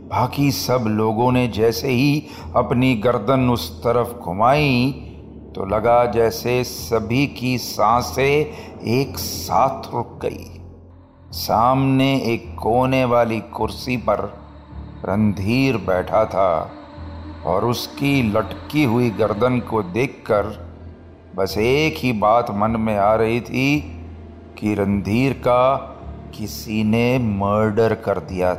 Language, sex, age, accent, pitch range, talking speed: Hindi, male, 40-59, native, 95-125 Hz, 115 wpm